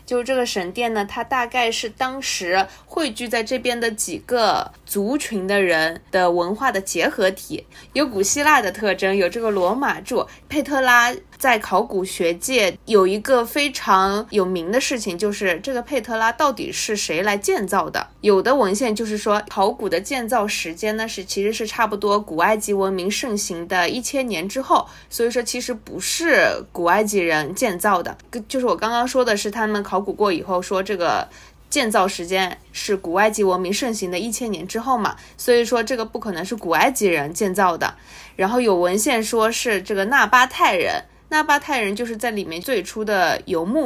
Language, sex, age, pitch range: Chinese, female, 20-39, 190-240 Hz